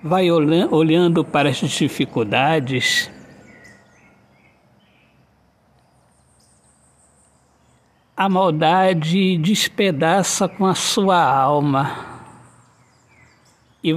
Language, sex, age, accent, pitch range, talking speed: Portuguese, male, 60-79, Brazilian, 155-220 Hz, 55 wpm